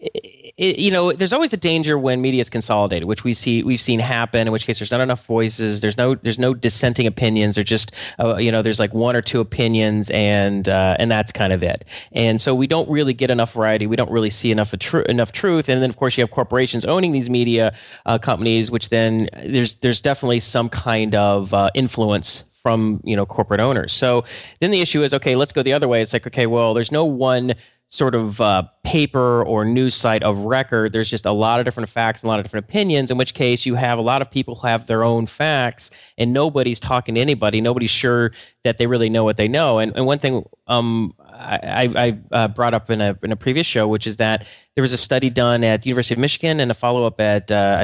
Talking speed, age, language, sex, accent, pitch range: 245 wpm, 30-49, English, male, American, 110-130 Hz